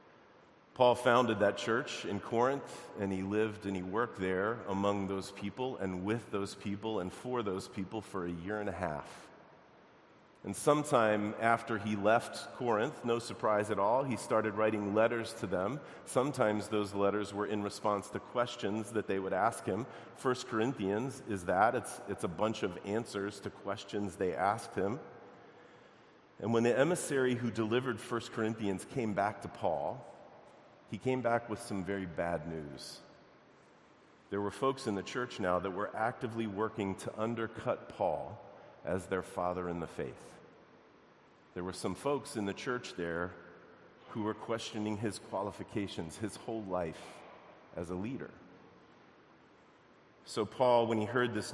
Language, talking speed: English, 160 wpm